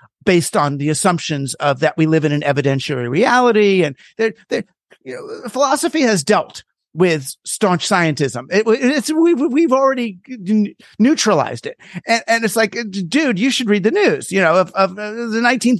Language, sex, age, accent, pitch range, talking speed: English, male, 50-69, American, 165-230 Hz, 175 wpm